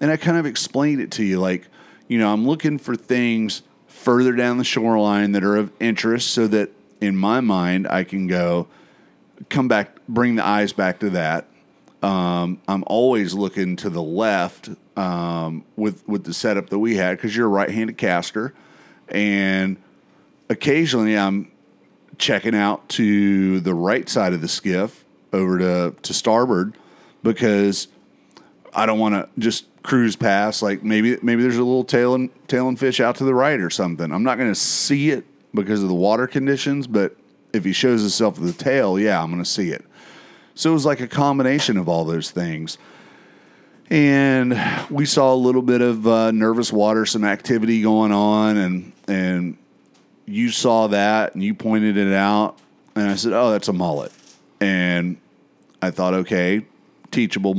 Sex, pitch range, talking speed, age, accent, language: male, 95-120 Hz, 180 wpm, 40-59, American, English